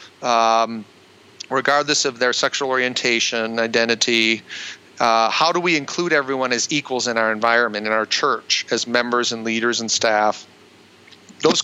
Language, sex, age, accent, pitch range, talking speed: English, male, 40-59, American, 115-135 Hz, 145 wpm